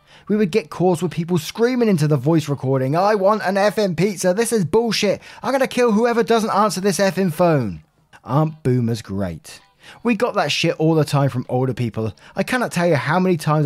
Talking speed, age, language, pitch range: 215 wpm, 20-39, English, 120-175 Hz